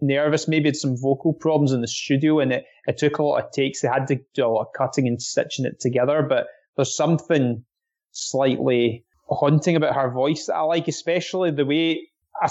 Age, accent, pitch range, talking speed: 20-39, British, 135-170 Hz, 205 wpm